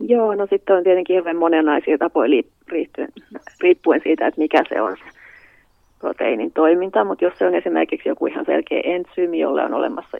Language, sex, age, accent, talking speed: Finnish, female, 30-49, native, 165 wpm